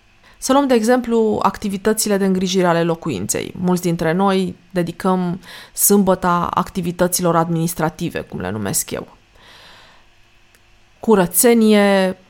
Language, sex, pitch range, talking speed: Romanian, female, 165-205 Hz, 100 wpm